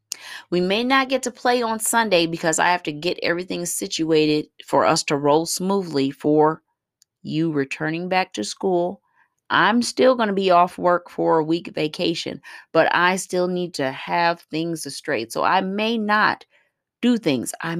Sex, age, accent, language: female, 30-49, American, English